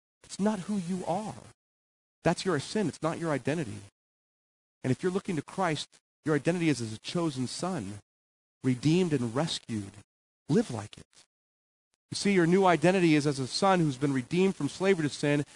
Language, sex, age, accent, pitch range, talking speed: English, male, 40-59, American, 130-175 Hz, 180 wpm